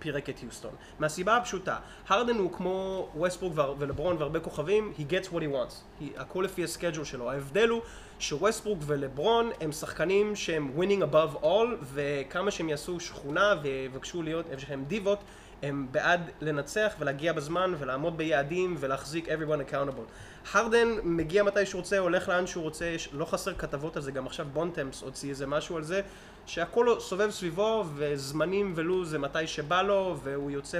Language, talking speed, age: Hebrew, 160 wpm, 20-39